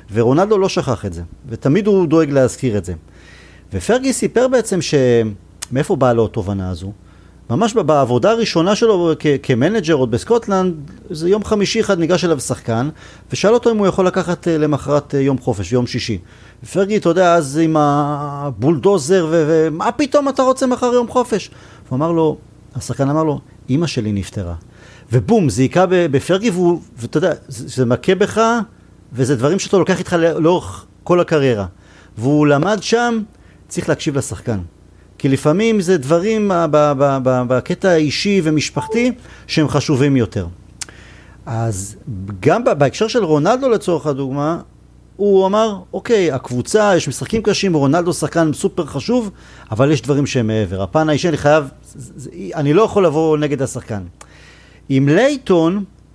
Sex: male